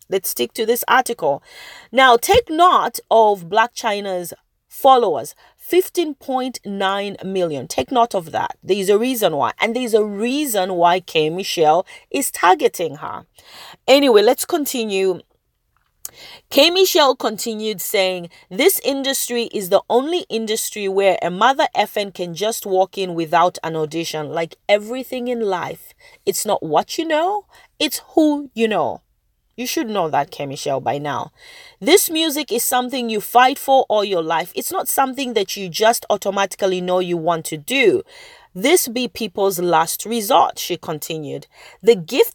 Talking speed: 150 wpm